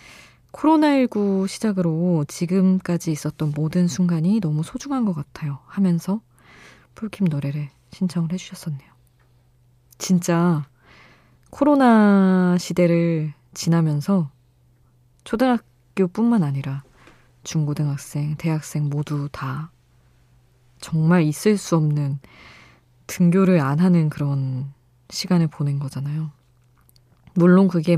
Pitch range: 135-180 Hz